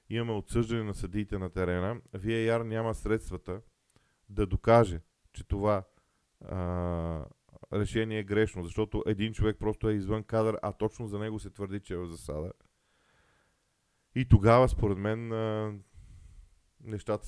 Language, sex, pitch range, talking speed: Bulgarian, male, 95-110 Hz, 140 wpm